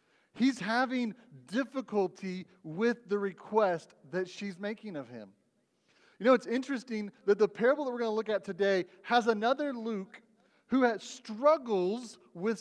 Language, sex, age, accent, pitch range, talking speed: English, male, 40-59, American, 180-230 Hz, 150 wpm